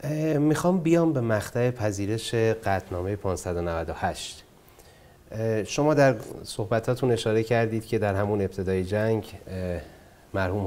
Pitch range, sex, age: 90-110 Hz, male, 30-49